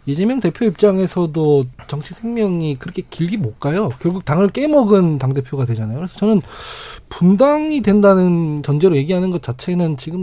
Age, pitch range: 20-39, 150-220 Hz